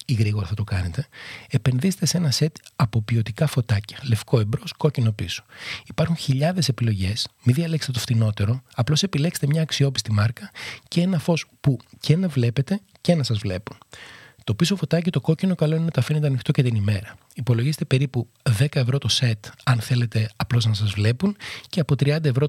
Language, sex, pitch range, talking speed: Greek, male, 115-155 Hz, 185 wpm